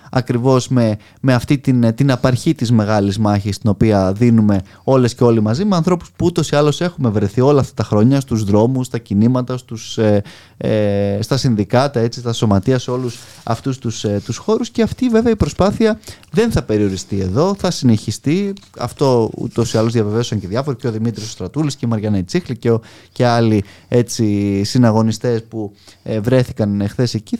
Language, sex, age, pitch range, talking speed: Greek, male, 20-39, 110-140 Hz, 230 wpm